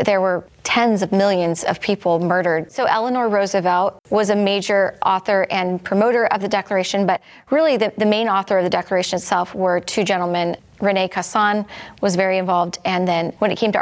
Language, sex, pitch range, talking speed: English, female, 185-210 Hz, 190 wpm